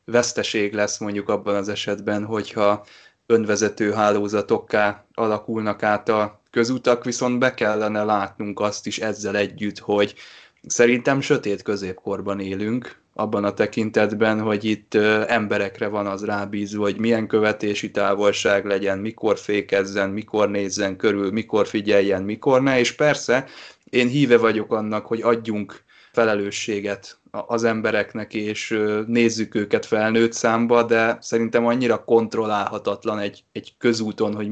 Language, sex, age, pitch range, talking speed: Hungarian, male, 20-39, 100-115 Hz, 125 wpm